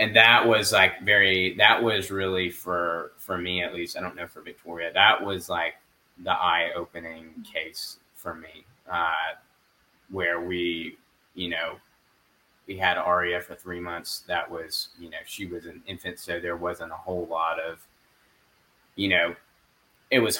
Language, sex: English, male